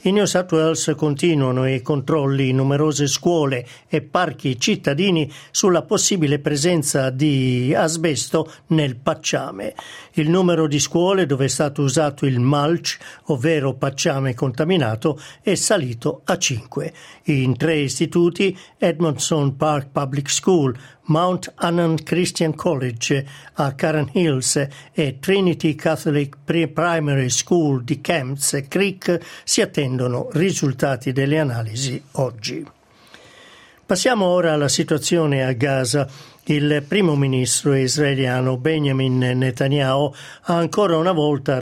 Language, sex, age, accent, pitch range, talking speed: Italian, male, 50-69, native, 140-165 Hz, 115 wpm